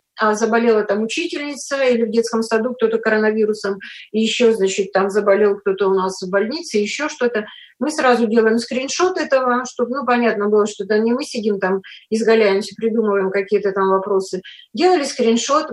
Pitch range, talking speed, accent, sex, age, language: 220-265 Hz, 165 wpm, native, female, 30-49, Russian